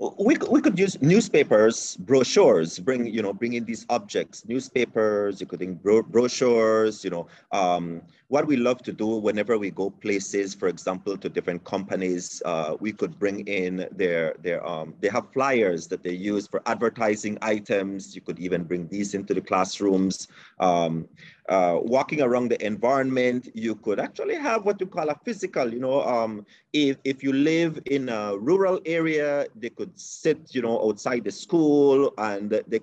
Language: English